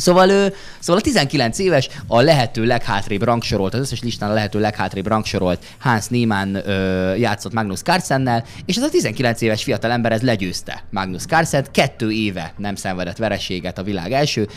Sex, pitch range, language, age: male, 100-155 Hz, Hungarian, 20-39